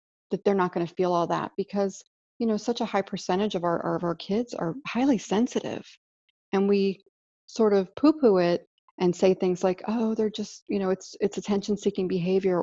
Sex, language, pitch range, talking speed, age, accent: female, English, 175-215 Hz, 200 wpm, 40-59, American